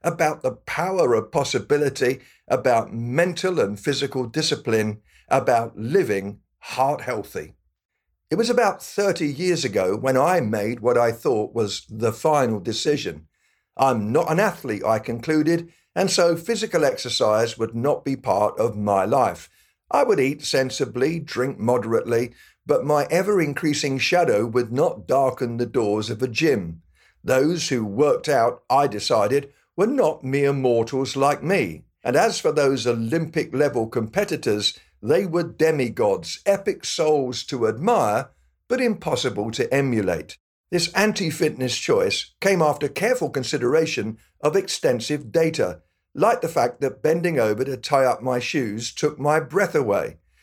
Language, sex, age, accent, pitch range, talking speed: English, male, 50-69, British, 120-165 Hz, 145 wpm